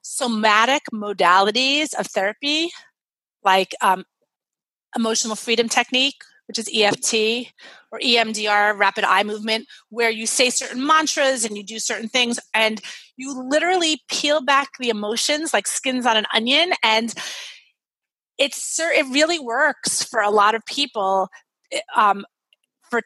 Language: English